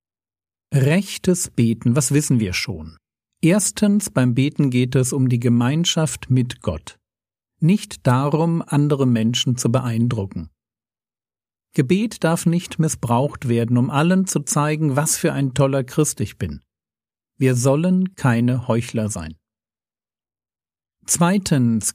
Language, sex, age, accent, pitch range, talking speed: German, male, 50-69, German, 115-155 Hz, 120 wpm